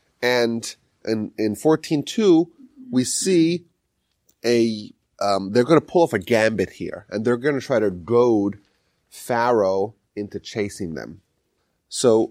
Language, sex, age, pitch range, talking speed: English, male, 30-49, 110-160 Hz, 135 wpm